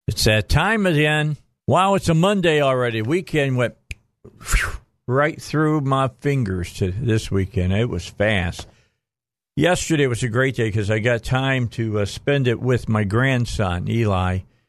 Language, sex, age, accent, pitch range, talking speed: English, male, 50-69, American, 105-125 Hz, 155 wpm